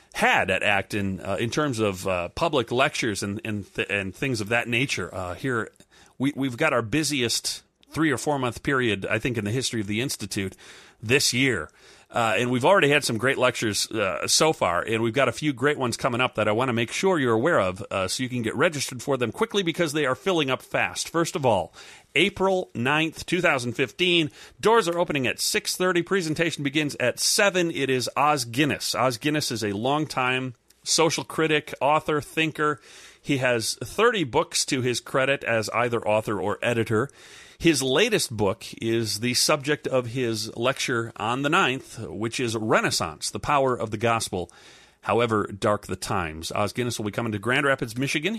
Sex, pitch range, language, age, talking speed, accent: male, 110-150 Hz, English, 40-59, 195 wpm, American